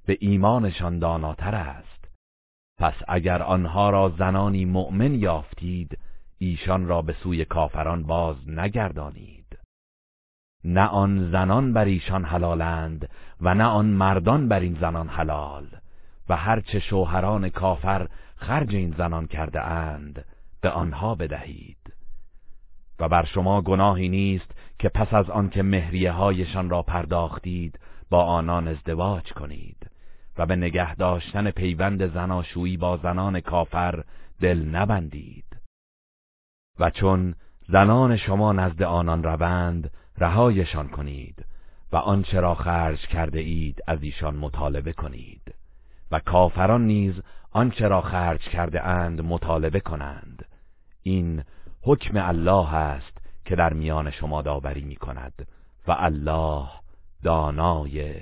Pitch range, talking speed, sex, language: 80-95 Hz, 120 wpm, male, Persian